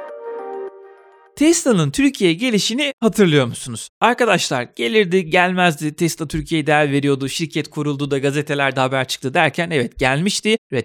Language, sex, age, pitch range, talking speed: Turkish, male, 30-49, 135-200 Hz, 120 wpm